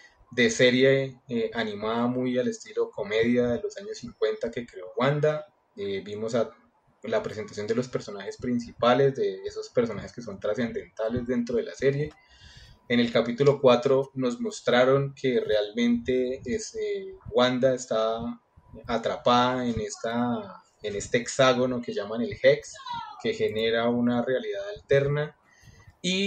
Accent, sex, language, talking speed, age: Colombian, male, Spanish, 140 wpm, 20-39